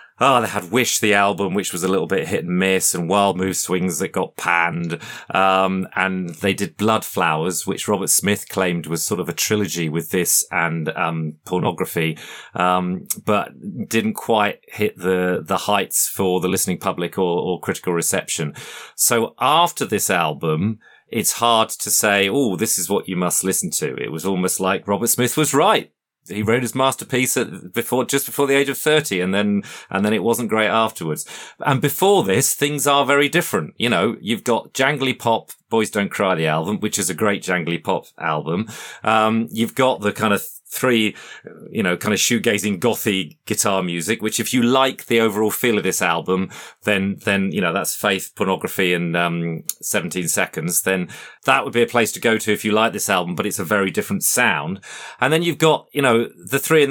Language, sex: English, male